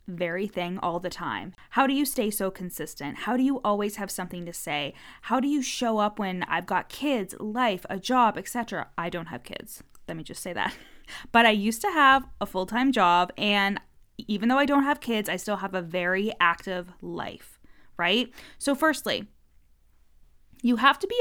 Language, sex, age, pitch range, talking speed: English, female, 20-39, 180-245 Hz, 200 wpm